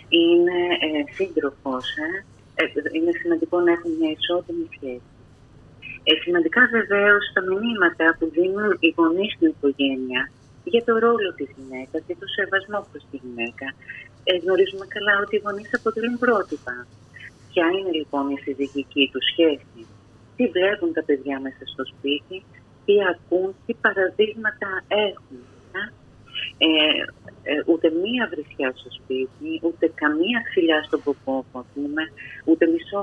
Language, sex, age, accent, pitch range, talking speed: Greek, female, 30-49, native, 140-205 Hz, 135 wpm